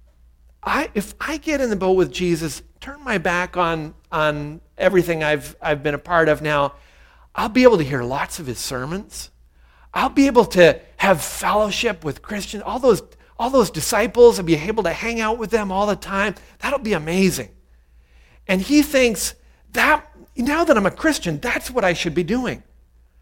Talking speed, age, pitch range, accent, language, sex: 190 wpm, 40-59, 150-220 Hz, American, English, male